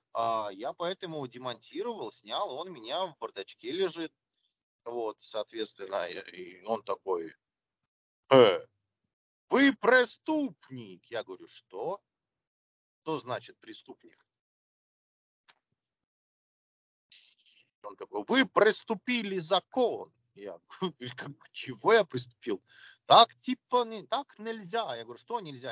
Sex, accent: male, native